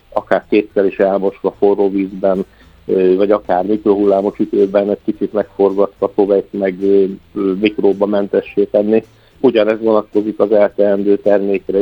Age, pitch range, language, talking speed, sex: 50-69, 95-105 Hz, Hungarian, 115 wpm, male